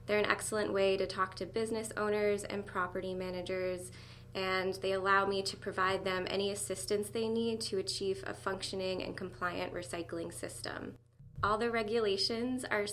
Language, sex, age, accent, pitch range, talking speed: English, female, 20-39, American, 180-205 Hz, 165 wpm